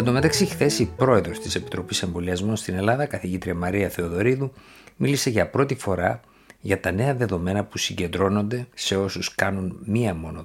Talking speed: 165 wpm